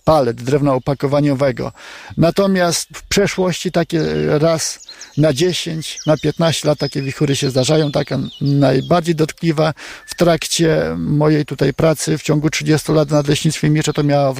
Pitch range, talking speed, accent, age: 145-165 Hz, 145 wpm, native, 50-69